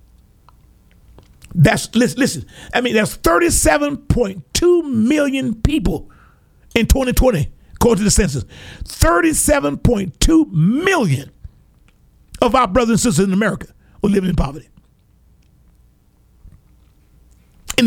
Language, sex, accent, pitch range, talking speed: English, male, American, 180-235 Hz, 95 wpm